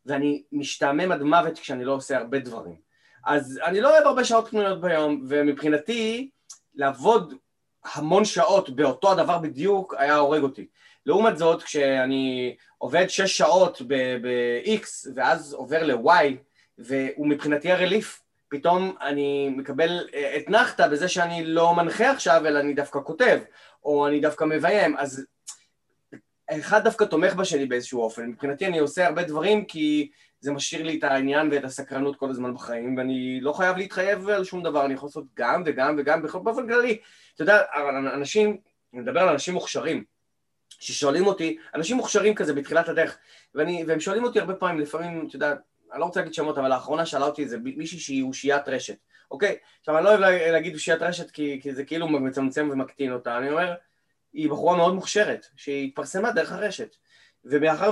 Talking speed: 165 wpm